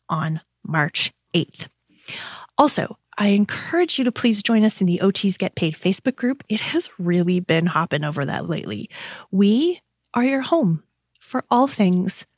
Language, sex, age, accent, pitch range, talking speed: English, female, 30-49, American, 170-245 Hz, 160 wpm